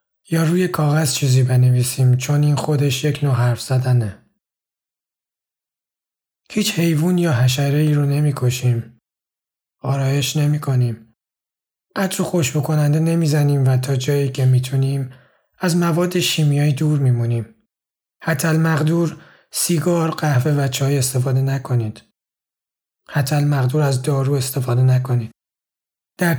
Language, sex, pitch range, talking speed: Persian, male, 130-155 Hz, 115 wpm